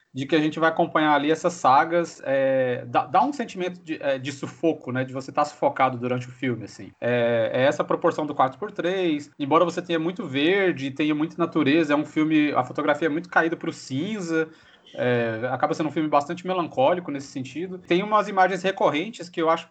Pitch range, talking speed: 145-180 Hz, 200 wpm